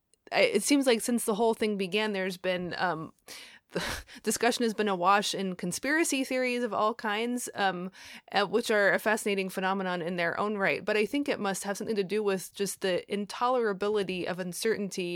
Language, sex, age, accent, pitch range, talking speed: English, female, 20-39, American, 180-215 Hz, 190 wpm